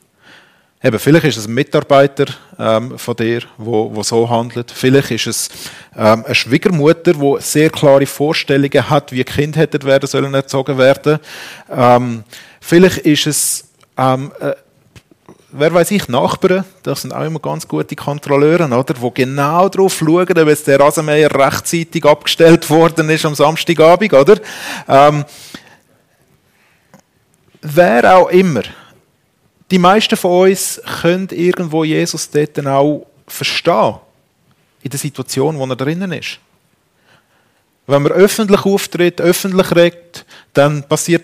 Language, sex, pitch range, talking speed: German, male, 130-170 Hz, 135 wpm